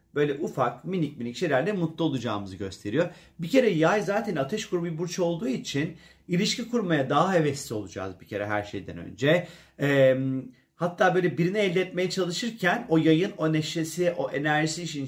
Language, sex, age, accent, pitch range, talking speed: Turkish, male, 40-59, native, 130-175 Hz, 165 wpm